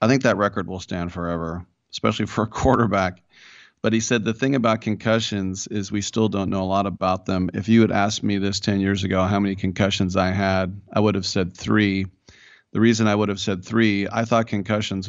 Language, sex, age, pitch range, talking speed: English, male, 40-59, 95-110 Hz, 225 wpm